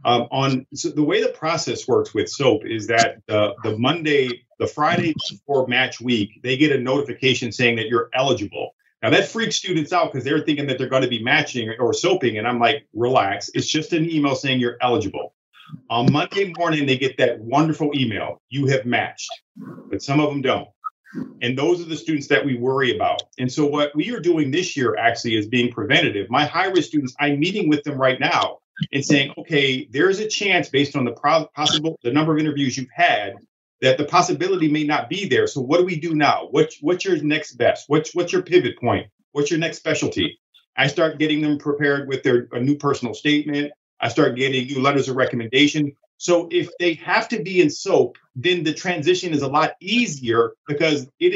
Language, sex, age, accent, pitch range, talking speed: English, male, 40-59, American, 130-170 Hz, 210 wpm